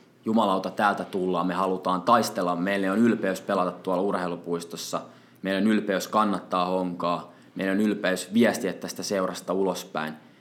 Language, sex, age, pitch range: Finnish, male, 20-39, 90-115 Hz